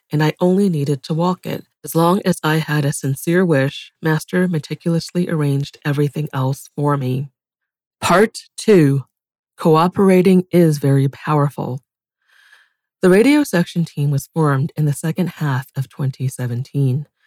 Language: English